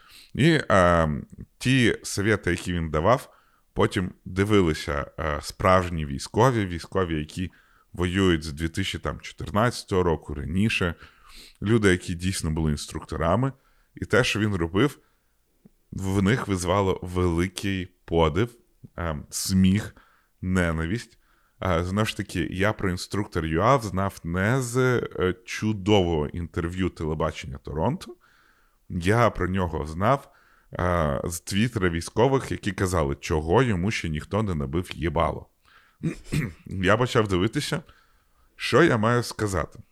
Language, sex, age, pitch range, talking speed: Ukrainian, male, 20-39, 85-110 Hz, 115 wpm